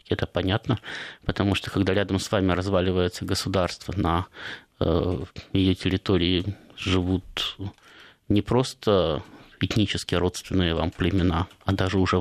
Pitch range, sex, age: 90-105 Hz, male, 20-39